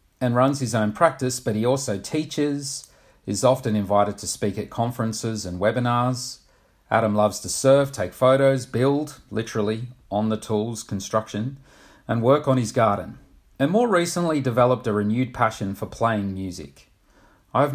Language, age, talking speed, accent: English, 40-59, 155 wpm, Australian